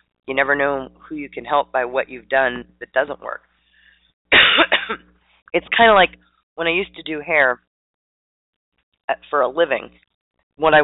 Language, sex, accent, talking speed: English, female, American, 165 wpm